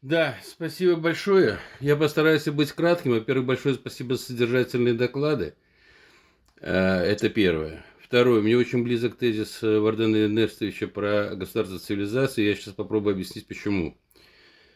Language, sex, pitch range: Russian, male, 95-120 Hz